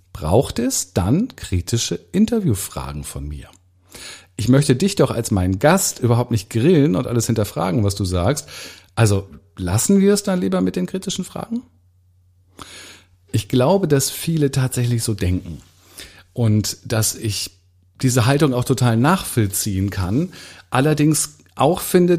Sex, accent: male, German